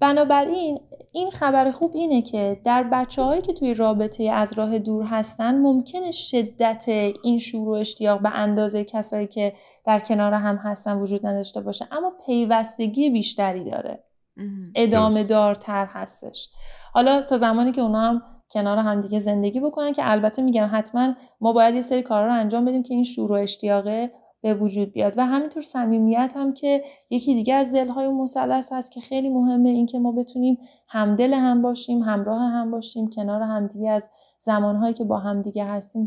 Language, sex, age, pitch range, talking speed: Persian, female, 30-49, 210-250 Hz, 165 wpm